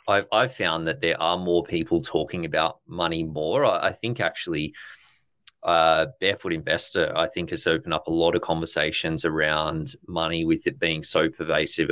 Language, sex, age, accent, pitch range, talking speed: English, male, 30-49, Australian, 80-95 Hz, 175 wpm